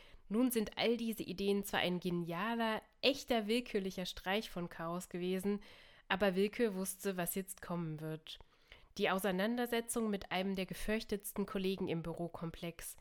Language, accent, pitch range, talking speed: German, German, 175-210 Hz, 140 wpm